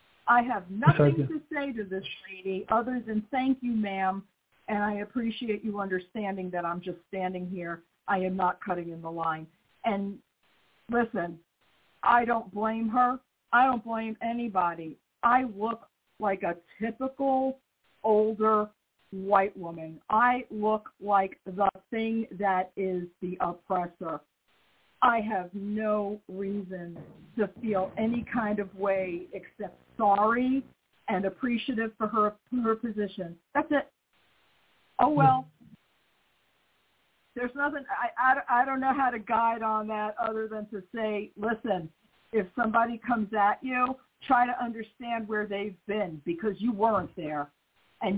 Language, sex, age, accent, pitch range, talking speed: English, female, 50-69, American, 185-230 Hz, 140 wpm